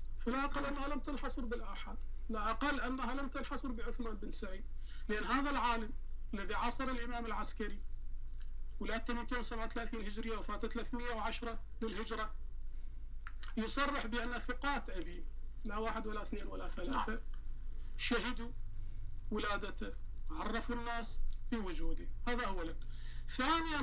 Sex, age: male, 40-59